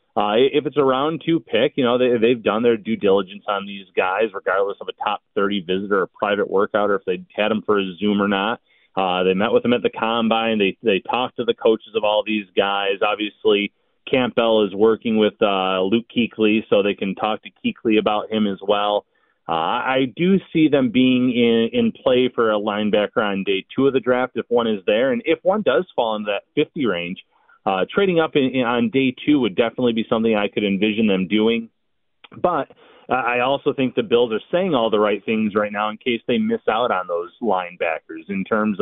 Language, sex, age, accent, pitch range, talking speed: English, male, 30-49, American, 105-125 Hz, 225 wpm